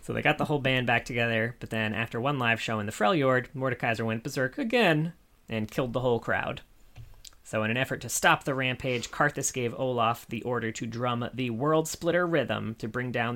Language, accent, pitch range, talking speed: English, American, 110-135 Hz, 210 wpm